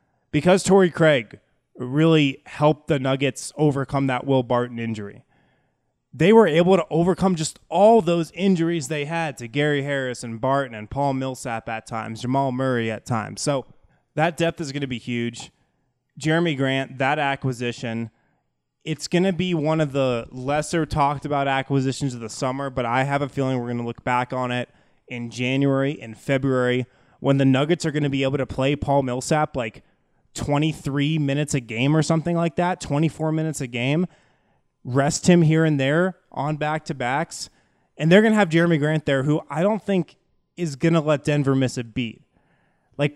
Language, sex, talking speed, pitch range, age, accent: English, male, 185 wpm, 130-165 Hz, 20-39, American